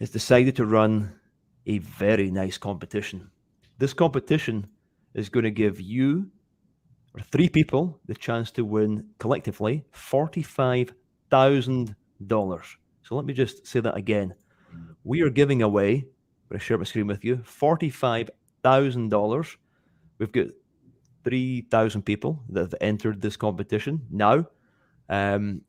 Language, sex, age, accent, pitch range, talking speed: English, male, 30-49, British, 105-135 Hz, 130 wpm